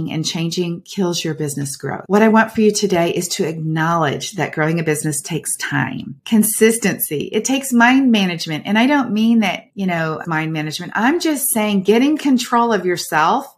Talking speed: 185 wpm